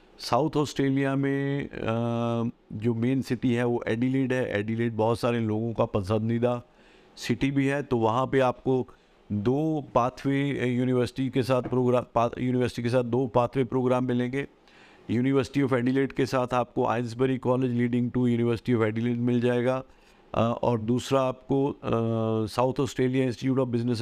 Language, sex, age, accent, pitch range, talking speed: Hindi, male, 50-69, native, 120-130 Hz, 145 wpm